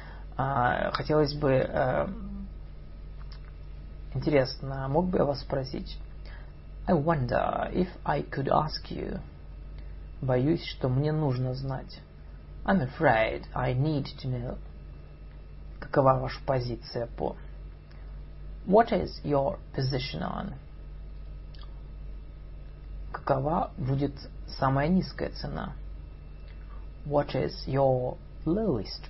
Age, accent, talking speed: 30-49, native, 90 wpm